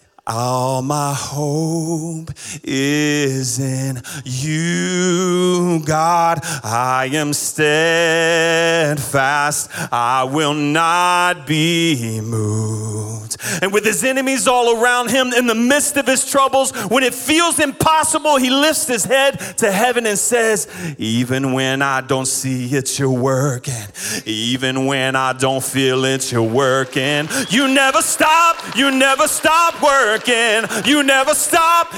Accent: American